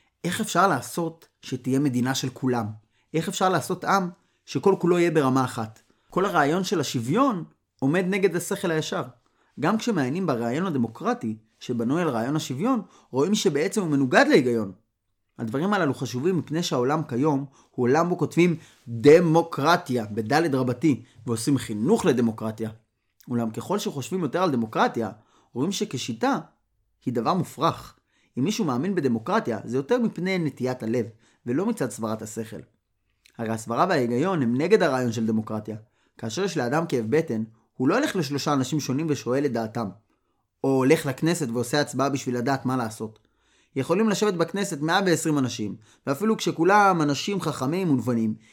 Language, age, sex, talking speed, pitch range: Hebrew, 30-49, male, 145 wpm, 115-175 Hz